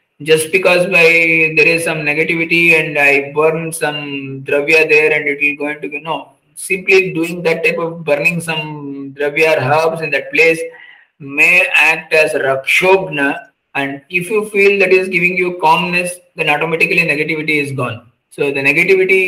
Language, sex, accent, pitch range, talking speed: English, male, Indian, 150-180 Hz, 170 wpm